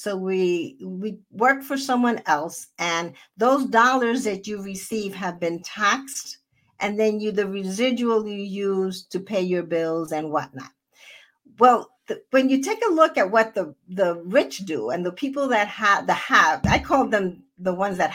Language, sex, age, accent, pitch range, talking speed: English, female, 50-69, American, 190-275 Hz, 180 wpm